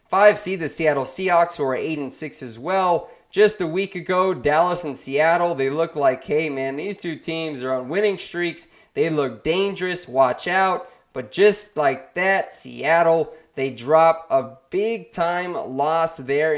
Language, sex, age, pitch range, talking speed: English, male, 20-39, 145-180 Hz, 160 wpm